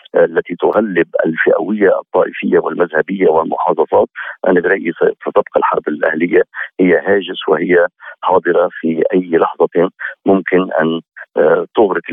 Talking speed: 110 wpm